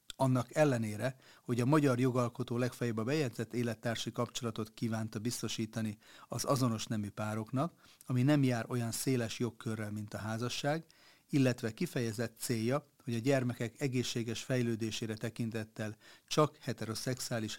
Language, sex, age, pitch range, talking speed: Hungarian, male, 40-59, 115-135 Hz, 125 wpm